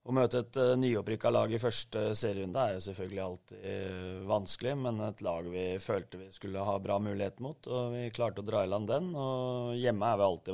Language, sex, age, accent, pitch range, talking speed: English, male, 30-49, Swedish, 105-120 Hz, 200 wpm